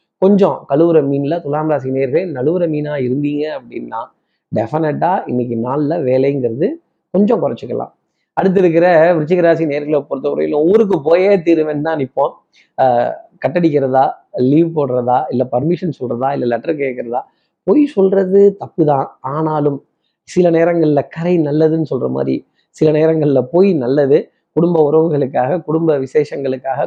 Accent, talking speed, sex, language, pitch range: native, 120 wpm, male, Tamil, 140-170 Hz